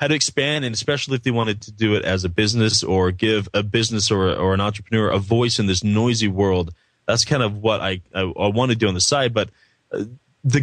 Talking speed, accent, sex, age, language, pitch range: 250 wpm, American, male, 20-39, English, 100-125 Hz